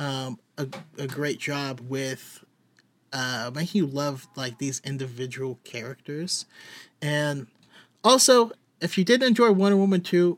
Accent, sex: American, male